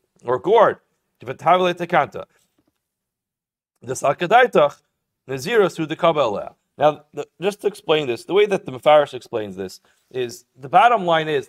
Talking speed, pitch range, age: 130 wpm, 150-195 Hz, 40-59